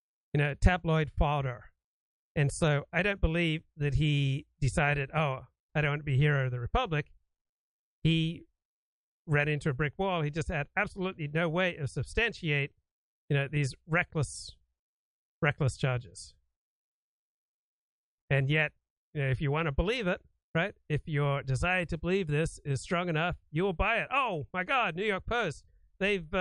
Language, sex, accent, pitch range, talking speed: English, male, American, 145-185 Hz, 165 wpm